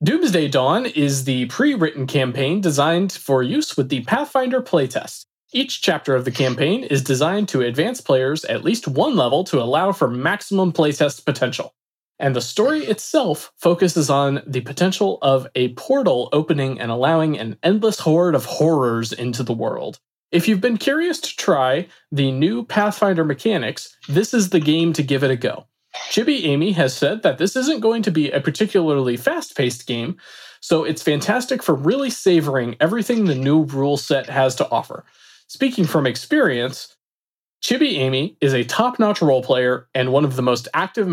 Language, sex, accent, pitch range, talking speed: English, male, American, 135-195 Hz, 170 wpm